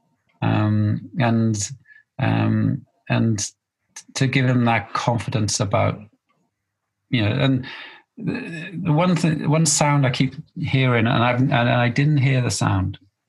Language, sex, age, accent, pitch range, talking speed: English, male, 40-59, British, 115-135 Hz, 130 wpm